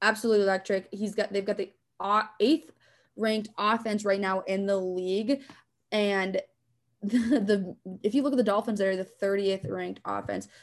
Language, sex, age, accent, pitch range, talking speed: English, female, 20-39, American, 180-210 Hz, 165 wpm